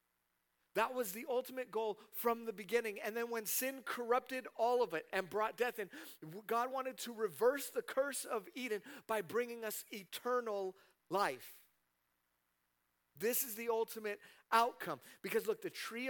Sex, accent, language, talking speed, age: male, American, English, 155 wpm, 40-59